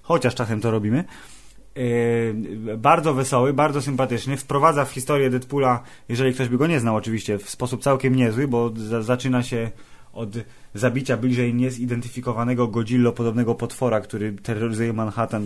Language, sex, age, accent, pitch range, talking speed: Polish, male, 20-39, native, 115-135 Hz, 140 wpm